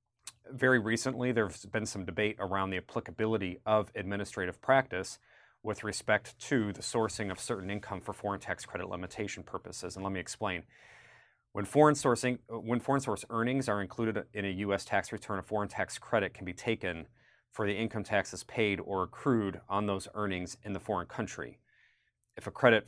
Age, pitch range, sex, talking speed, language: 30-49, 95-115 Hz, male, 180 wpm, English